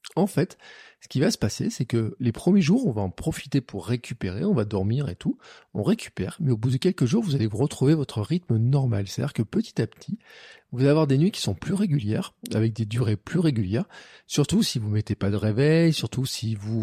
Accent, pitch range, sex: French, 105-140 Hz, male